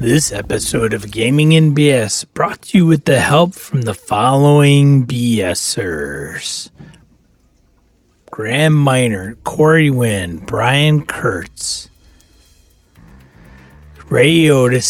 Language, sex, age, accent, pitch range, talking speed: English, male, 40-59, American, 120-160 Hz, 95 wpm